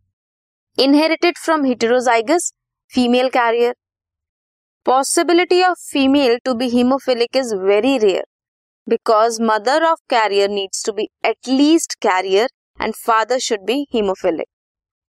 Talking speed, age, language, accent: 115 wpm, 20-39, Hindi, native